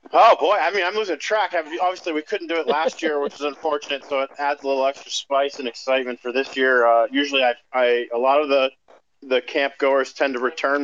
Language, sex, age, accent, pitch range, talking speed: English, male, 40-59, American, 130-155 Hz, 240 wpm